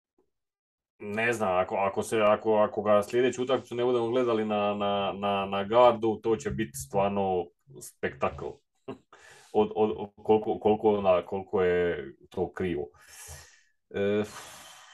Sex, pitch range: male, 105-130 Hz